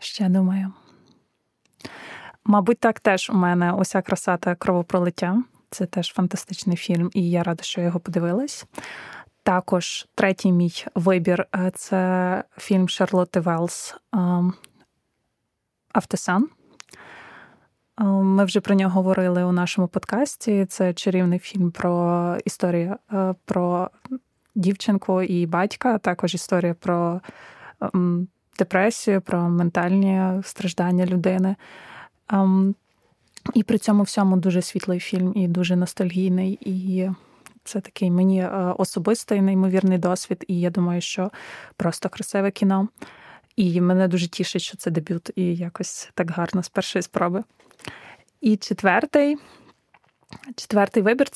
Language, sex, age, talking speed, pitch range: Ukrainian, female, 20-39, 115 wpm, 180-200 Hz